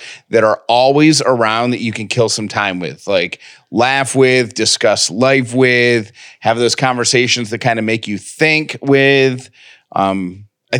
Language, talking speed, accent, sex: English, 160 wpm, American, male